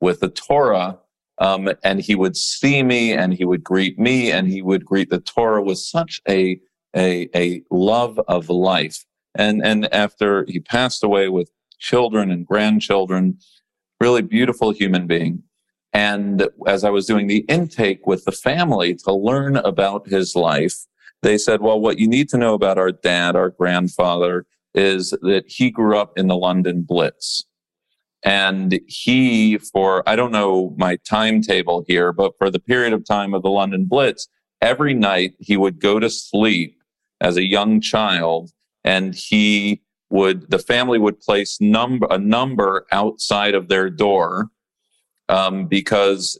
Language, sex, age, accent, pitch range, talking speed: English, male, 40-59, American, 95-110 Hz, 160 wpm